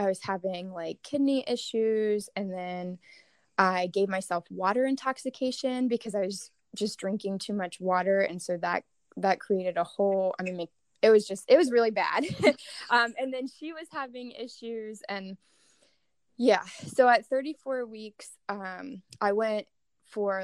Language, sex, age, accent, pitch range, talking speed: English, female, 20-39, American, 190-235 Hz, 160 wpm